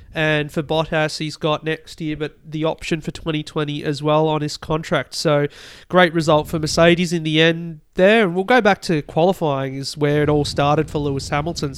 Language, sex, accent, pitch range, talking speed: English, male, Australian, 150-165 Hz, 205 wpm